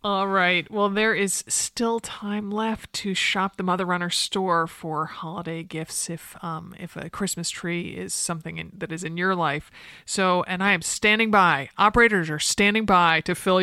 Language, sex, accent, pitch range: English, male, American, 160-195 Hz